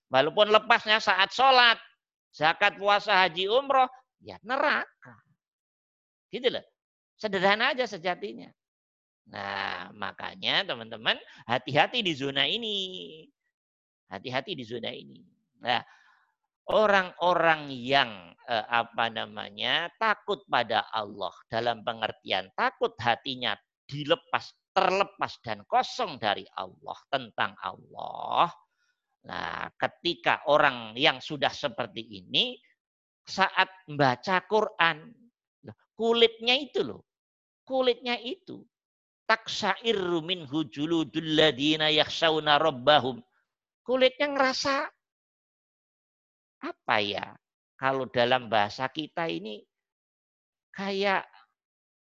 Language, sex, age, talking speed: Indonesian, male, 50-69, 85 wpm